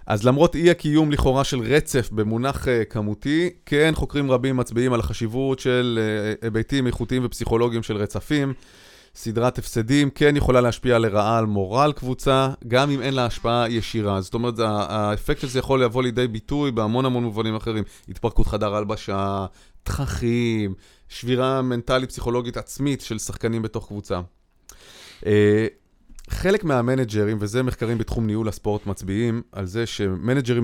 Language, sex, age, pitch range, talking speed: Hebrew, male, 30-49, 100-130 Hz, 150 wpm